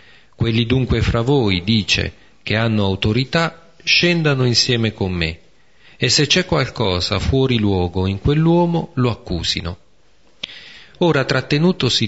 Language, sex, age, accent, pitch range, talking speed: Italian, male, 40-59, native, 100-135 Hz, 120 wpm